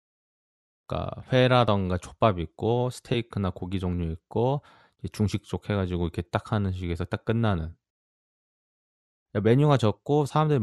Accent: native